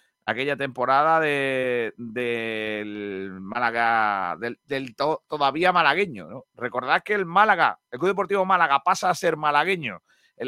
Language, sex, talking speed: Spanish, male, 145 wpm